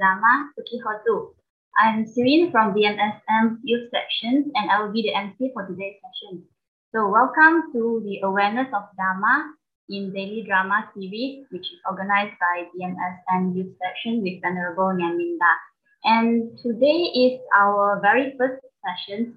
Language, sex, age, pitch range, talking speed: English, female, 20-39, 185-255 Hz, 140 wpm